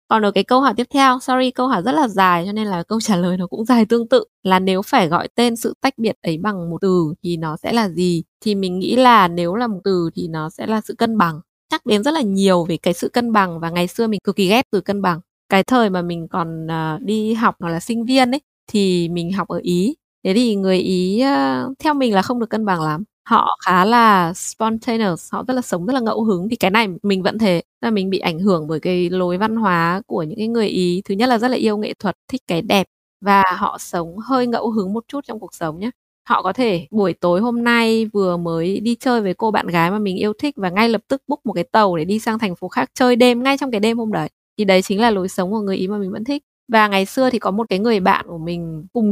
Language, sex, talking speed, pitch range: Vietnamese, female, 275 wpm, 180-235 Hz